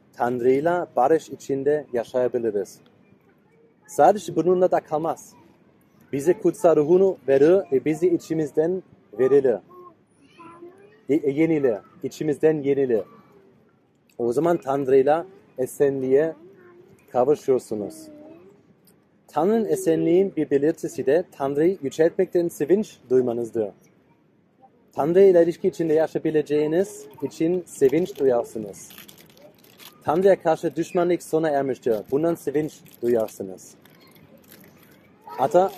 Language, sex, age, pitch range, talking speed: Turkish, male, 30-49, 140-185 Hz, 85 wpm